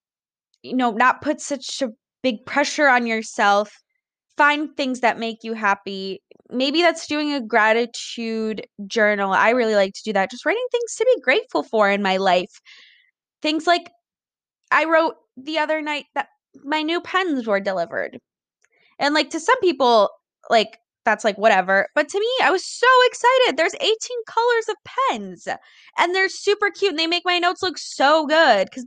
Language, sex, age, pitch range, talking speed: English, female, 20-39, 245-360 Hz, 175 wpm